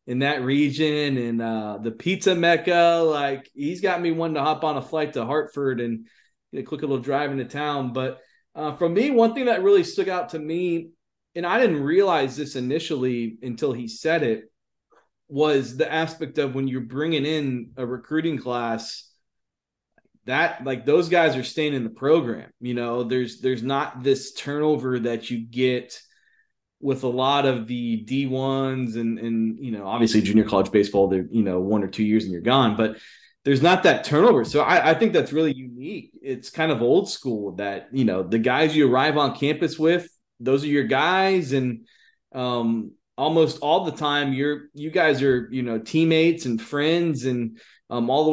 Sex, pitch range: male, 125-165 Hz